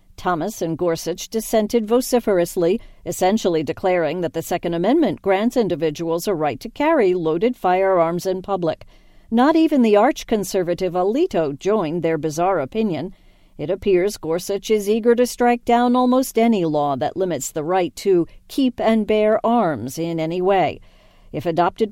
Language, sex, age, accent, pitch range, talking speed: English, female, 50-69, American, 170-230 Hz, 150 wpm